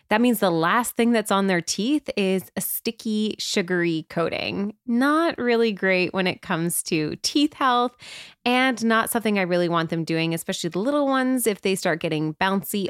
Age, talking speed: 20-39, 185 wpm